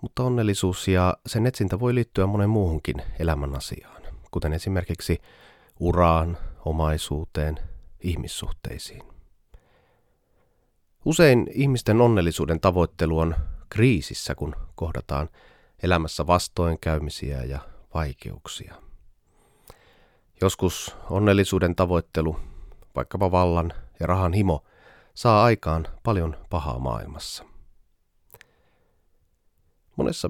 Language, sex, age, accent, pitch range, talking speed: Finnish, male, 30-49, native, 80-100 Hz, 85 wpm